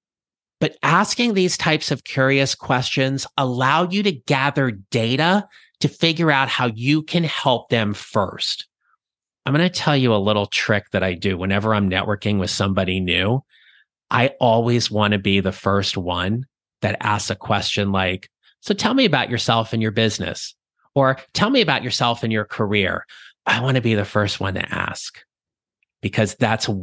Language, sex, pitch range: English, male, 105-135 Hz